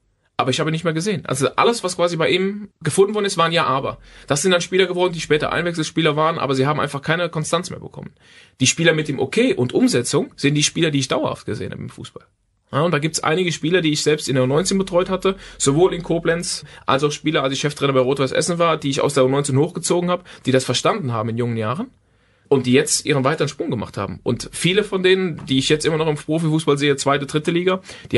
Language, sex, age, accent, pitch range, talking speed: German, male, 30-49, German, 135-170 Hz, 255 wpm